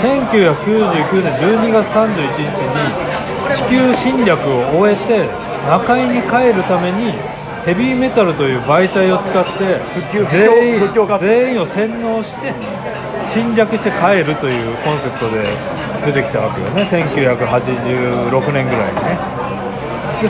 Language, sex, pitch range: Japanese, male, 150-215 Hz